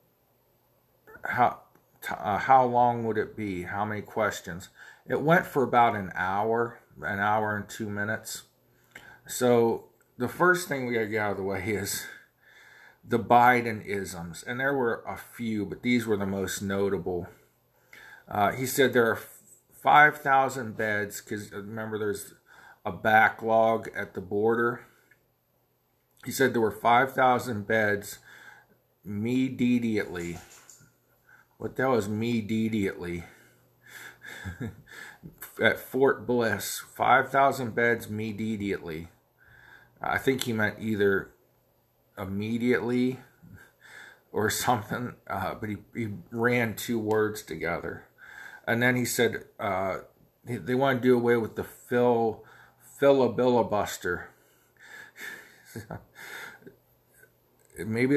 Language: English